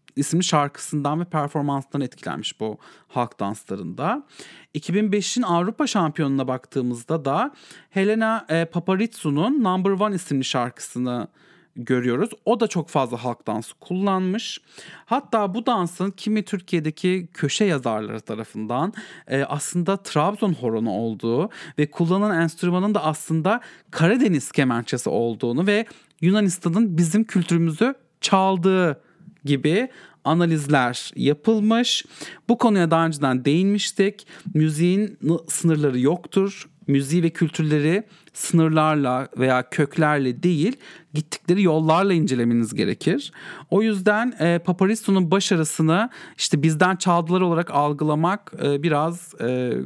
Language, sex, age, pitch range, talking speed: English, male, 40-59, 145-195 Hz, 105 wpm